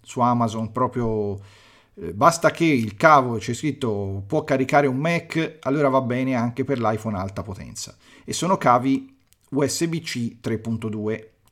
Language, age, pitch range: Italian, 40-59, 110-155 Hz